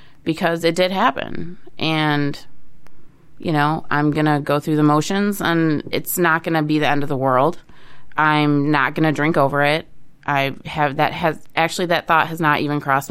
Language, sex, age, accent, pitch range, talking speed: English, female, 30-49, American, 145-165 Hz, 185 wpm